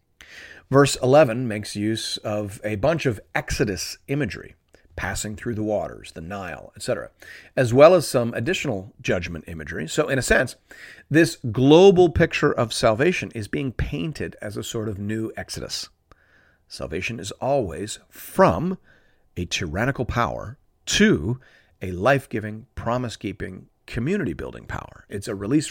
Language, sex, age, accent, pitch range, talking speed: English, male, 40-59, American, 100-145 Hz, 140 wpm